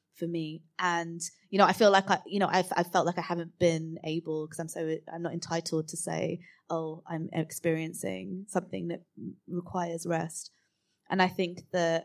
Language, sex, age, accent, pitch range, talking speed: English, female, 20-39, British, 155-180 Hz, 195 wpm